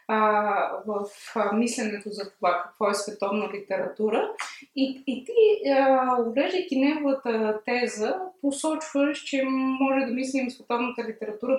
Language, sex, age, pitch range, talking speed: Bulgarian, female, 20-39, 210-270 Hz, 120 wpm